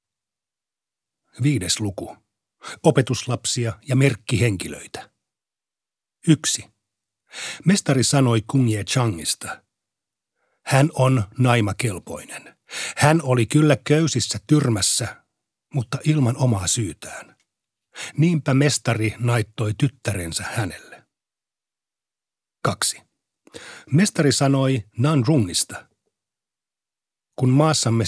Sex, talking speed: male, 75 wpm